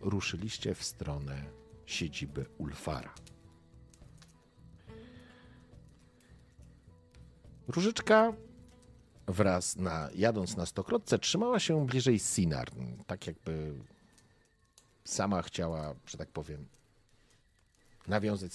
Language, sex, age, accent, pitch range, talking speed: Polish, male, 50-69, native, 90-135 Hz, 75 wpm